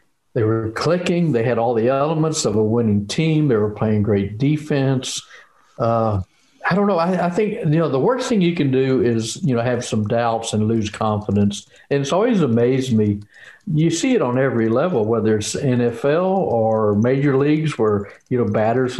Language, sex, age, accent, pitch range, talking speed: English, male, 60-79, American, 110-160 Hz, 195 wpm